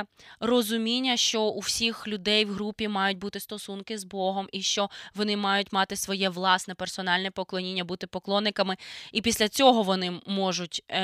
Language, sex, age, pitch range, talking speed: Ukrainian, female, 20-39, 185-215 Hz, 150 wpm